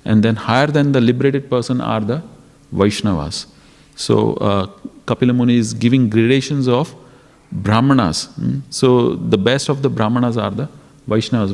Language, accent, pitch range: English, Indian, 110-135 Hz